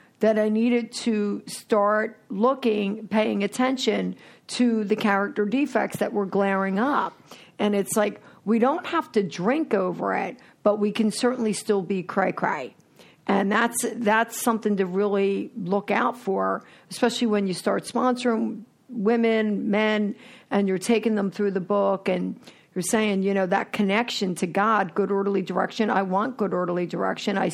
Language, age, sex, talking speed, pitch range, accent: English, 50-69, female, 160 wpm, 195-230 Hz, American